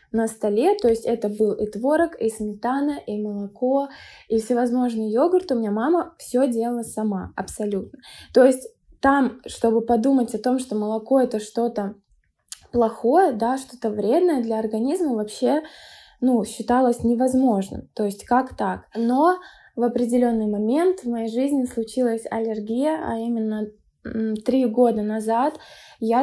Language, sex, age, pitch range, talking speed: Russian, female, 20-39, 225-275 Hz, 140 wpm